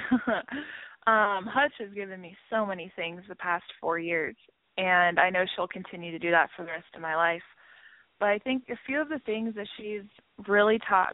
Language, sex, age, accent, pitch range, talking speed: English, female, 20-39, American, 175-205 Hz, 205 wpm